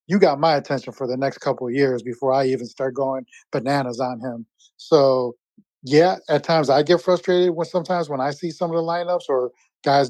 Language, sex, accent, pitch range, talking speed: English, male, American, 130-160 Hz, 215 wpm